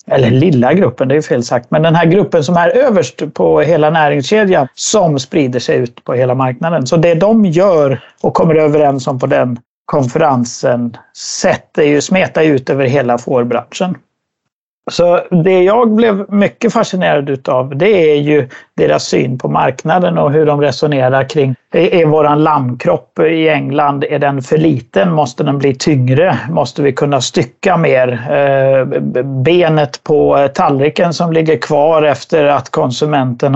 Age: 60-79